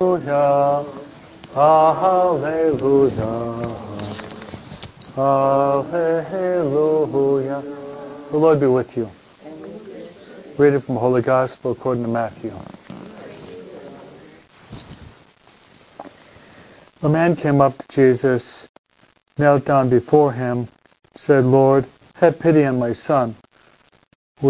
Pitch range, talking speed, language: 125-145 Hz, 85 wpm, English